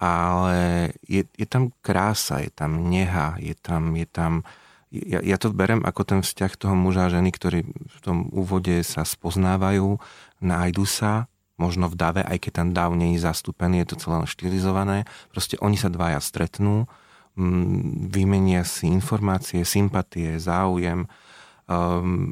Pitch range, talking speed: 90-105 Hz, 150 wpm